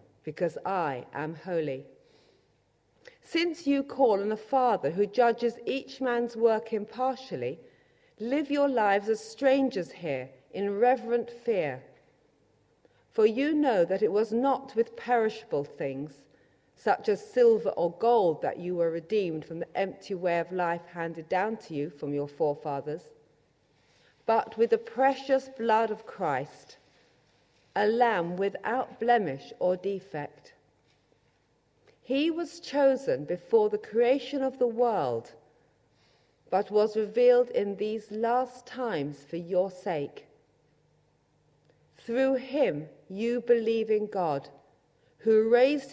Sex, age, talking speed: female, 50-69, 125 wpm